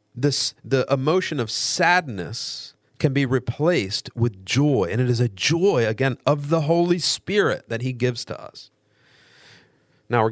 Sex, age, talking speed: male, 50-69, 150 wpm